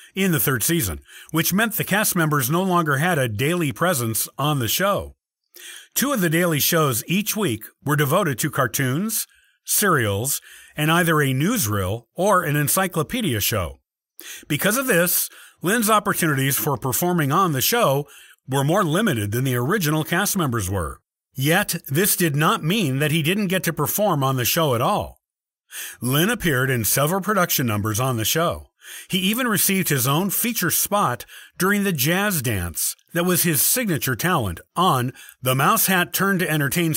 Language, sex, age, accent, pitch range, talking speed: English, male, 50-69, American, 130-180 Hz, 170 wpm